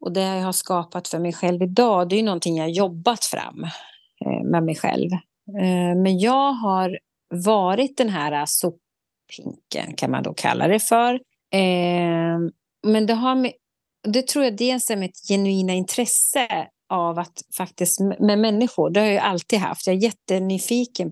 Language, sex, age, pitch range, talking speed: Swedish, female, 30-49, 170-210 Hz, 160 wpm